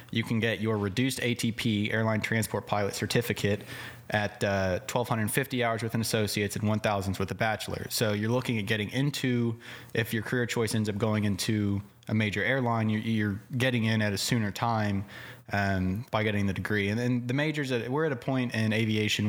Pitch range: 105-125 Hz